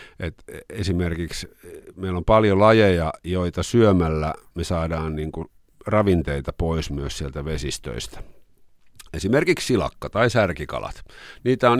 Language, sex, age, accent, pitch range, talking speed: Finnish, male, 50-69, native, 80-100 Hz, 105 wpm